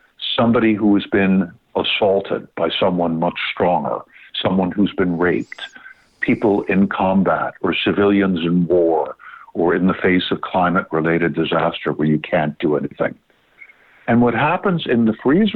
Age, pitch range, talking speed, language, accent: 60-79, 90-125 Hz, 145 wpm, English, American